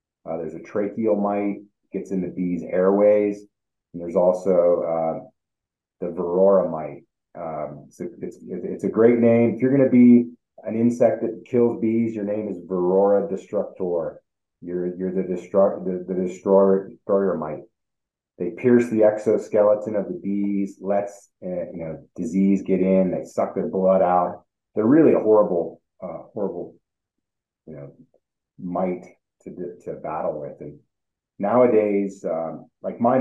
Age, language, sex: 30-49, English, male